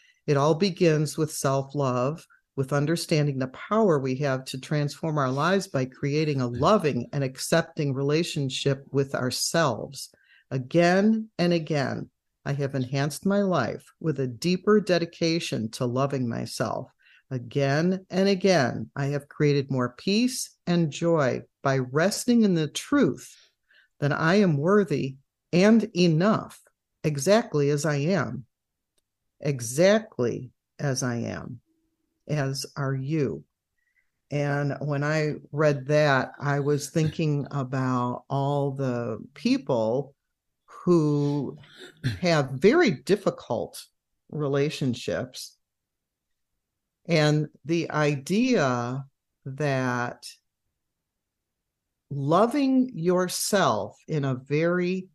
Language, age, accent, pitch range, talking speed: English, 50-69, American, 135-175 Hz, 105 wpm